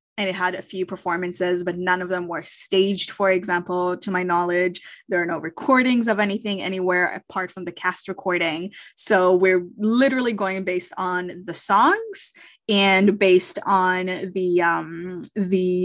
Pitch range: 185-225 Hz